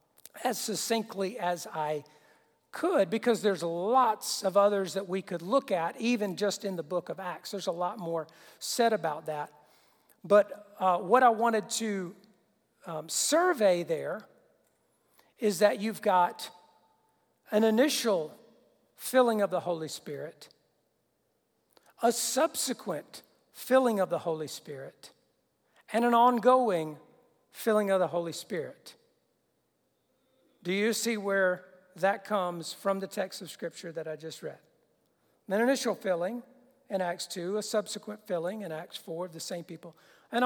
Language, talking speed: English, 140 wpm